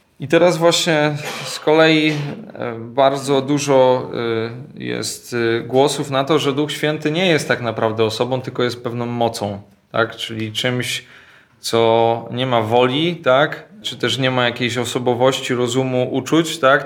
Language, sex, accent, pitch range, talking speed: Polish, male, native, 115-145 Hz, 140 wpm